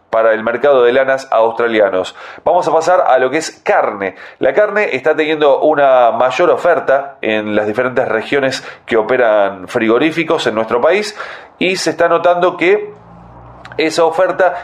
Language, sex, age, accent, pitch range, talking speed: Spanish, male, 30-49, Argentinian, 125-170 Hz, 155 wpm